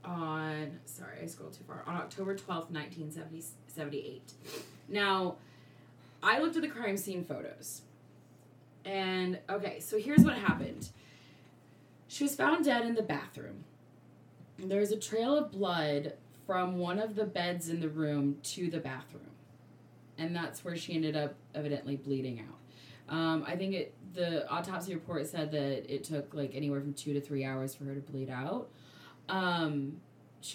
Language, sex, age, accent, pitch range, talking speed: English, female, 20-39, American, 140-195 Hz, 165 wpm